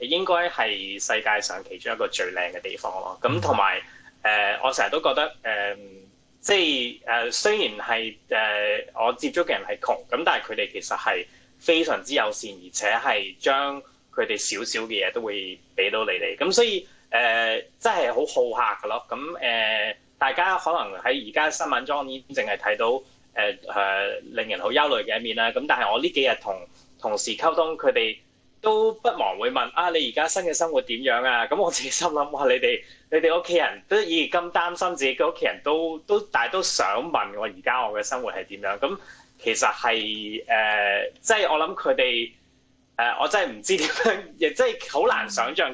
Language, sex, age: Chinese, male, 20-39